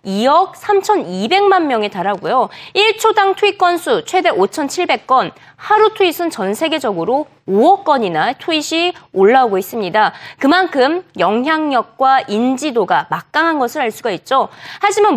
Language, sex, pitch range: Korean, female, 220-370 Hz